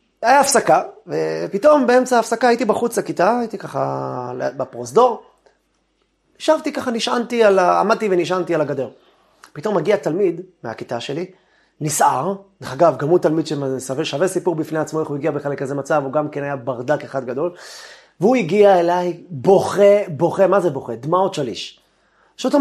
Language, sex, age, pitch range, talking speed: Hebrew, male, 30-49, 140-195 Hz, 155 wpm